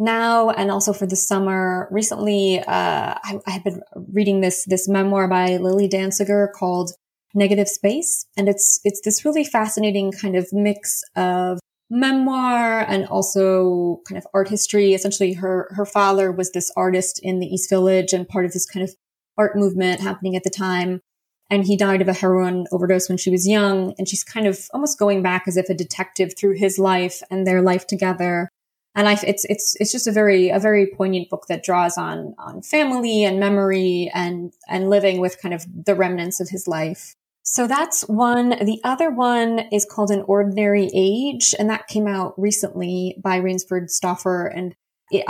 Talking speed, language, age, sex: 190 wpm, English, 20-39, female